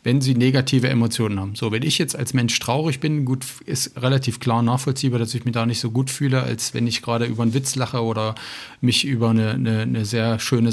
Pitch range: 115-135 Hz